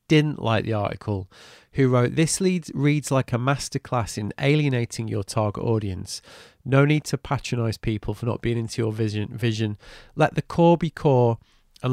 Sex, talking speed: male, 175 wpm